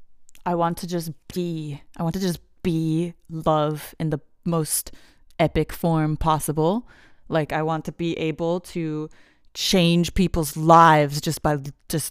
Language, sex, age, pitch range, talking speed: English, female, 20-39, 165-250 Hz, 150 wpm